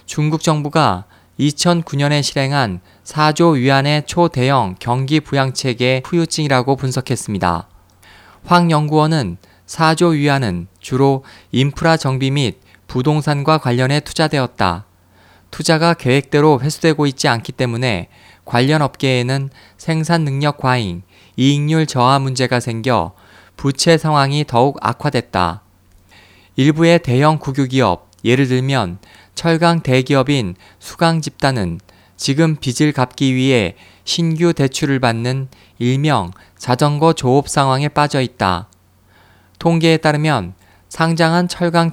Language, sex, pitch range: Korean, male, 100-150 Hz